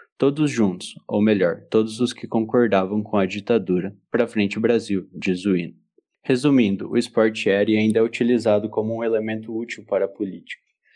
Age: 20-39